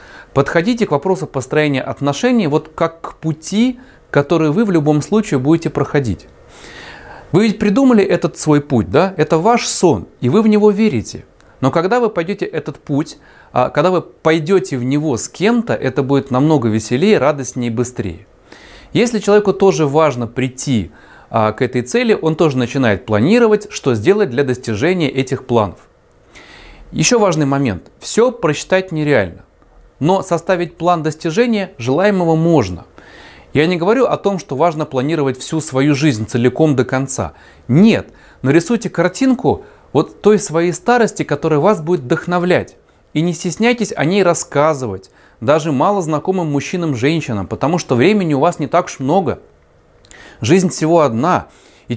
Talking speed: 150 wpm